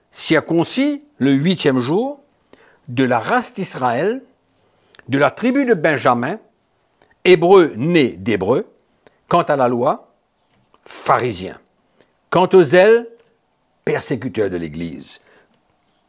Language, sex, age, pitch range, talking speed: French, male, 60-79, 145-200 Hz, 100 wpm